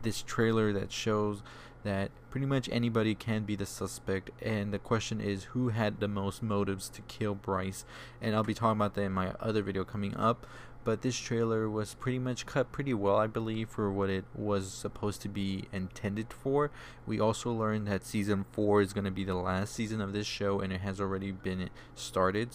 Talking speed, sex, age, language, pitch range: 210 wpm, male, 20-39, English, 95-115 Hz